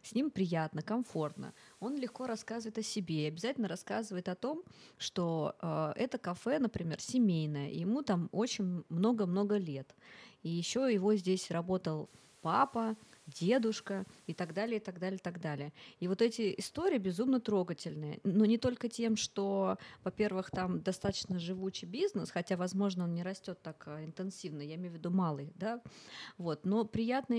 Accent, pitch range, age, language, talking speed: native, 170-225 Hz, 30-49, Russian, 165 wpm